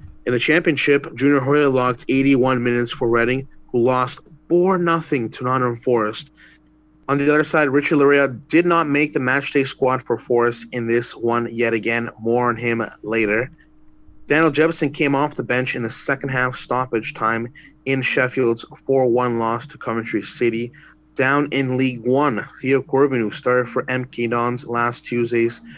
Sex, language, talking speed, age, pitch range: male, English, 165 wpm, 30-49, 120-140 Hz